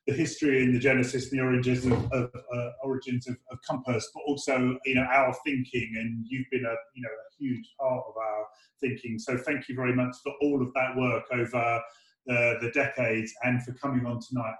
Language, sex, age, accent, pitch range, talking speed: English, male, 30-49, British, 120-140 Hz, 220 wpm